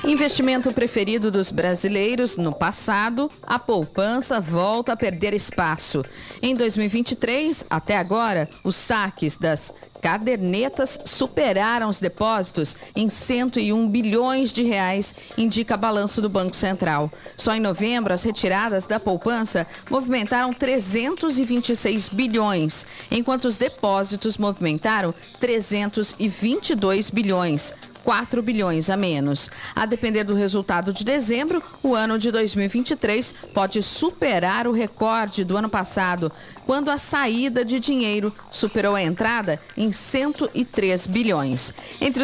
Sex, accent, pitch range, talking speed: female, Brazilian, 195-250 Hz, 115 wpm